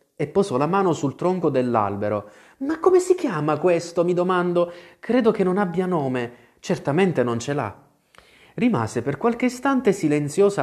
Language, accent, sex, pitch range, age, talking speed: Italian, native, male, 120-180 Hz, 30-49, 160 wpm